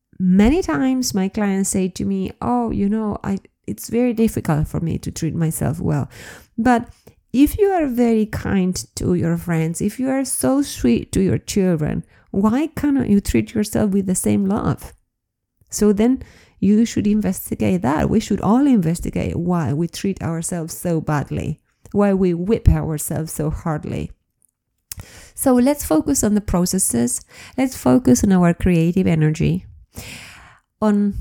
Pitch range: 170-235 Hz